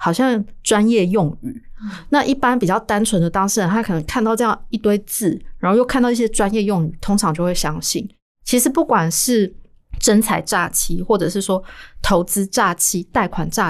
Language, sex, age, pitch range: Chinese, female, 20-39, 175-230 Hz